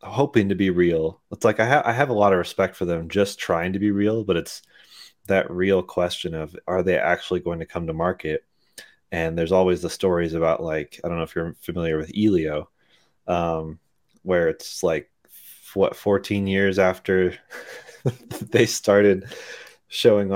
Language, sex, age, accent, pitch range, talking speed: English, male, 30-49, American, 80-95 Hz, 175 wpm